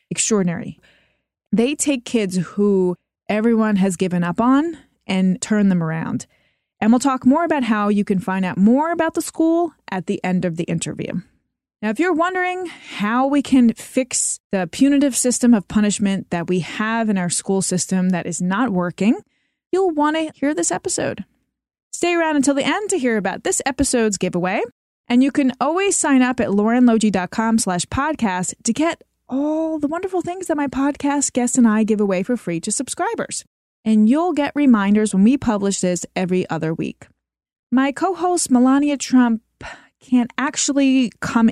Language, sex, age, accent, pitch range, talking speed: English, female, 20-39, American, 200-290 Hz, 175 wpm